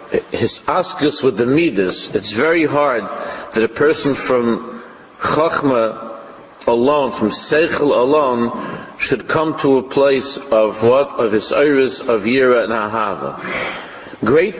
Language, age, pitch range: English, 50-69, 115-145 Hz